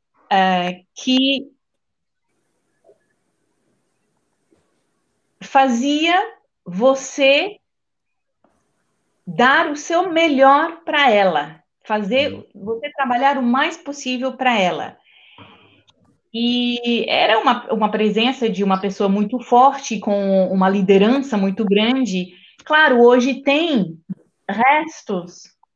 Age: 30-49